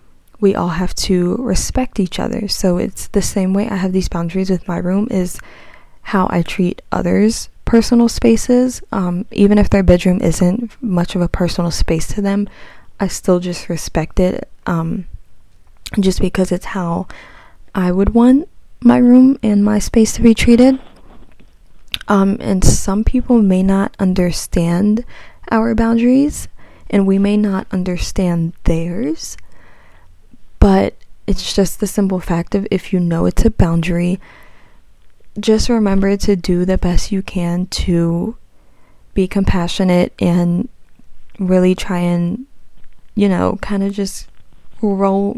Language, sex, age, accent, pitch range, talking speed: English, female, 20-39, American, 180-210 Hz, 145 wpm